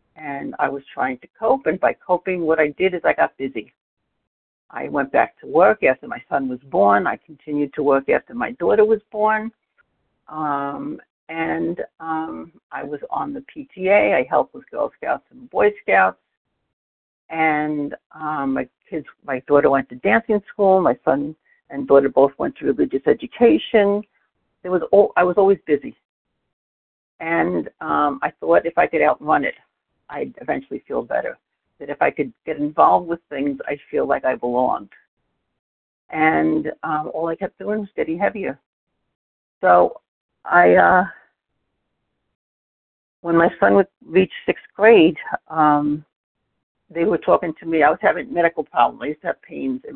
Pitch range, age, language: 140-195 Hz, 60-79, English